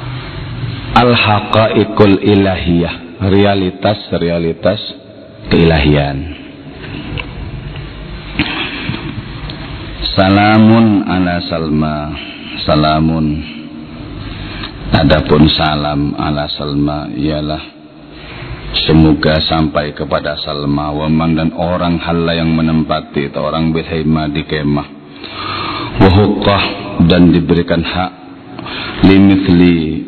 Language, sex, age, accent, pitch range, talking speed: Indonesian, male, 50-69, native, 80-95 Hz, 65 wpm